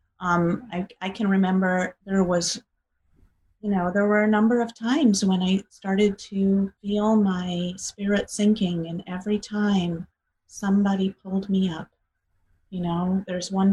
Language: English